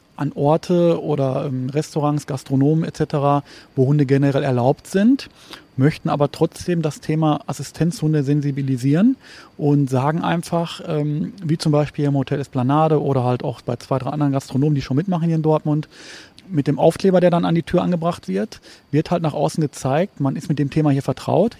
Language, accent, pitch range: German, German, 140-165 Hz